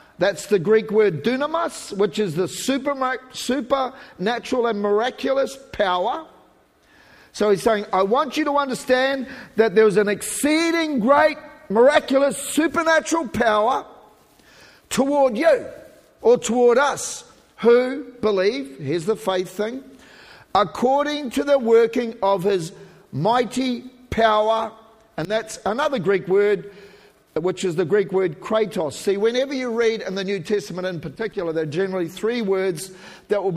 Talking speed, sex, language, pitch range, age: 135 wpm, male, English, 195-255 Hz, 50-69